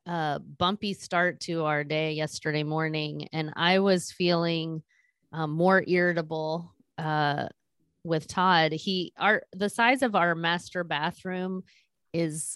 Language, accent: English, American